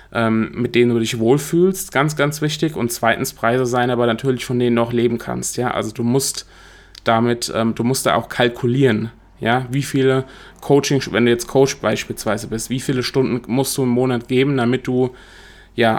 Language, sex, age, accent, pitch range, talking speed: German, male, 20-39, German, 115-135 Hz, 195 wpm